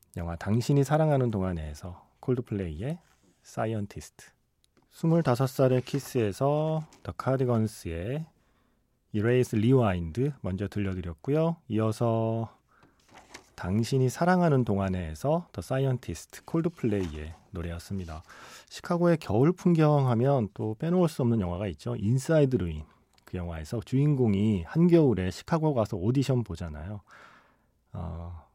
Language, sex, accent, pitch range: Korean, male, native, 95-140 Hz